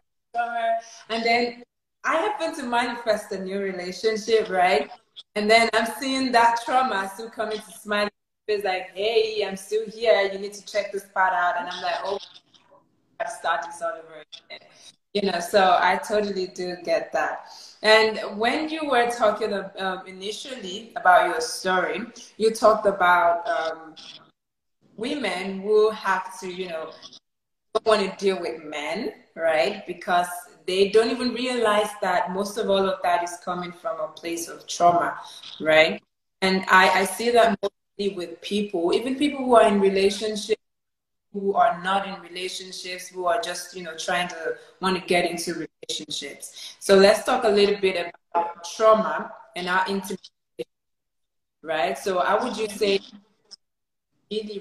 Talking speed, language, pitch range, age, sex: 165 wpm, English, 180-220 Hz, 20-39, female